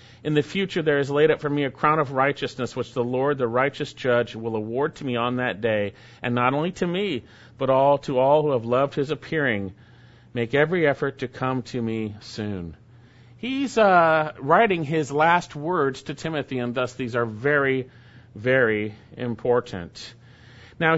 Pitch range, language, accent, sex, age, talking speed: 120-180 Hz, English, American, male, 40-59, 185 wpm